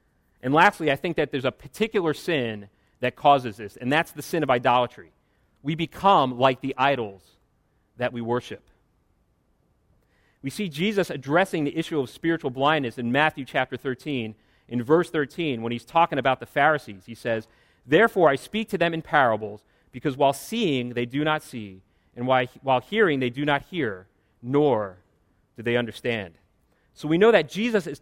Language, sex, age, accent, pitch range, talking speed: English, male, 40-59, American, 115-155 Hz, 175 wpm